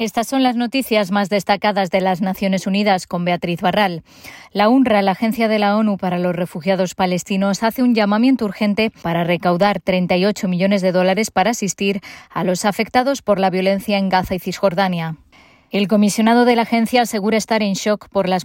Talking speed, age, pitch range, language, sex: 185 wpm, 20-39, 180-205 Hz, Spanish, female